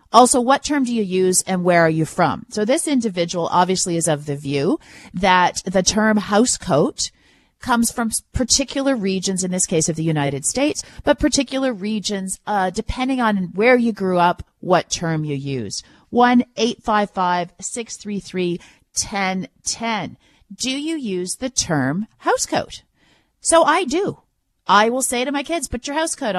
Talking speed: 155 wpm